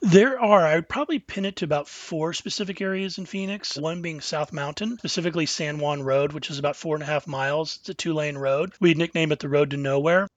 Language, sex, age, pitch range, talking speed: English, male, 30-49, 145-170 Hz, 245 wpm